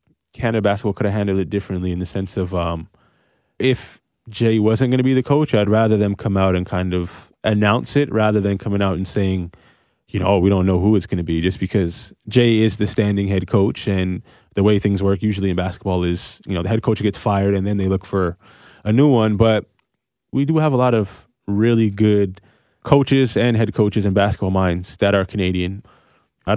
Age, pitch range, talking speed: 20-39, 95-110 Hz, 220 wpm